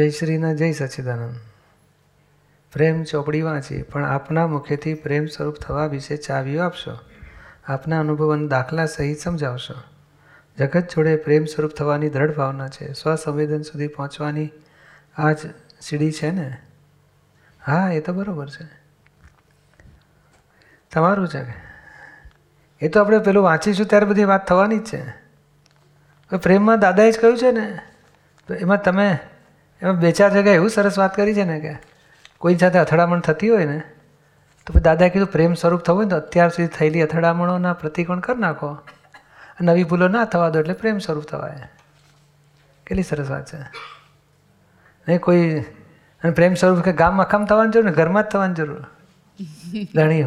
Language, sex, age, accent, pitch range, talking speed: Gujarati, male, 40-59, native, 150-180 Hz, 150 wpm